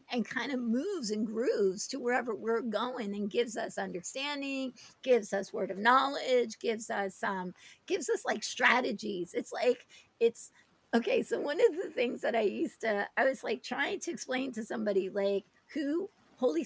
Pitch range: 200-260 Hz